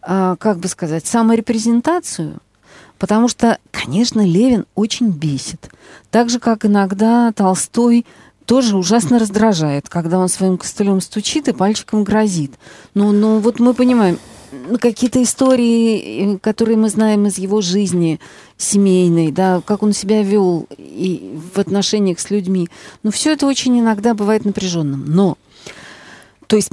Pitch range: 185-230 Hz